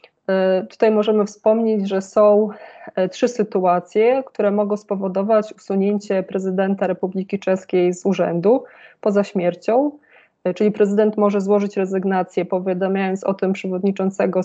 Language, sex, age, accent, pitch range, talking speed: Polish, female, 20-39, native, 190-210 Hz, 110 wpm